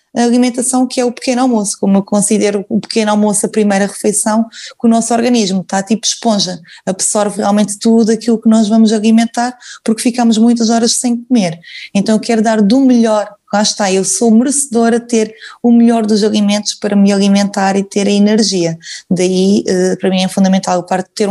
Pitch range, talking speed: 185-220 Hz, 195 wpm